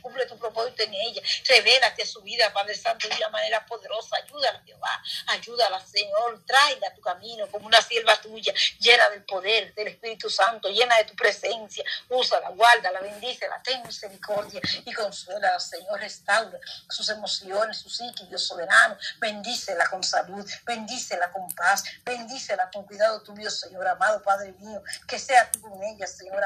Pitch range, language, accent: 200-245 Hz, Spanish, American